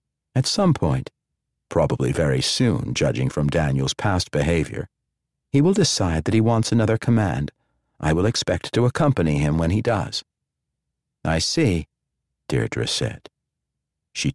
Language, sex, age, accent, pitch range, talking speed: English, male, 50-69, American, 80-120 Hz, 140 wpm